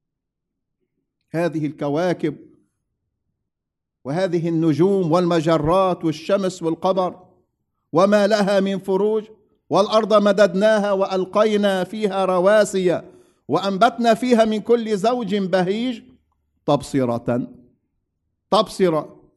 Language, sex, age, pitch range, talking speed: English, male, 50-69, 150-210 Hz, 75 wpm